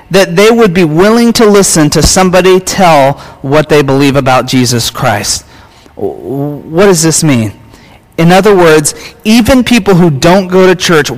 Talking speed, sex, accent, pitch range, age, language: 160 wpm, male, American, 145-195 Hz, 40-59, English